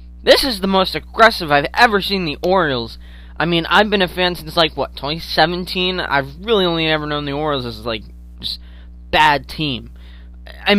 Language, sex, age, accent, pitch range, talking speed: English, male, 20-39, American, 115-185 Hz, 185 wpm